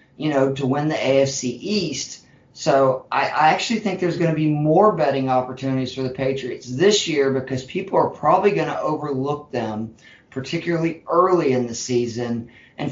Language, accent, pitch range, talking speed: English, American, 130-150 Hz, 175 wpm